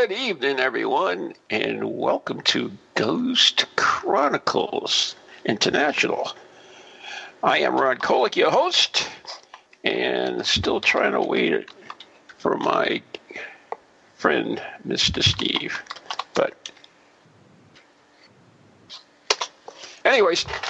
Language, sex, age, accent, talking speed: English, male, 50-69, American, 80 wpm